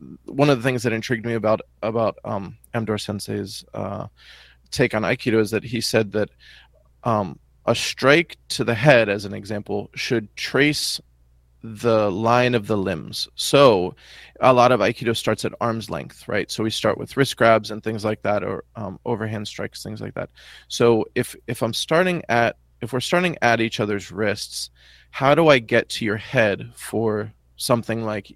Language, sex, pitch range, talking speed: English, male, 105-125 Hz, 185 wpm